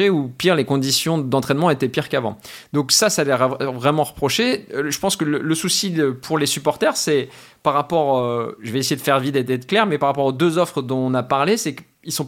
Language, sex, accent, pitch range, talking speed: French, male, French, 130-155 Hz, 255 wpm